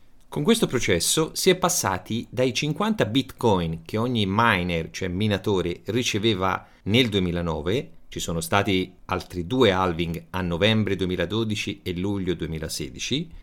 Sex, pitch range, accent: male, 95-130 Hz, native